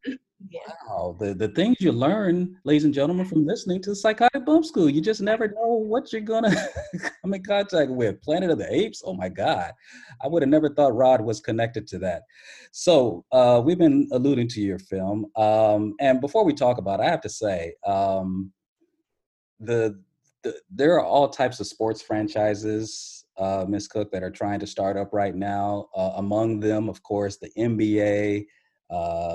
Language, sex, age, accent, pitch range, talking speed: English, male, 30-49, American, 95-120 Hz, 190 wpm